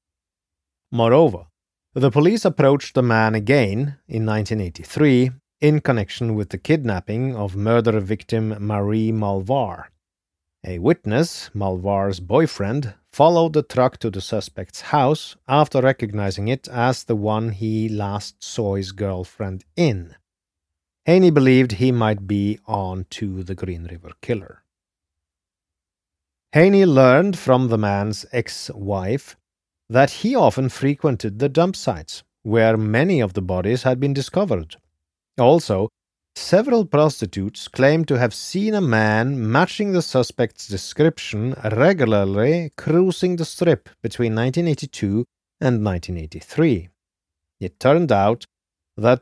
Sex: male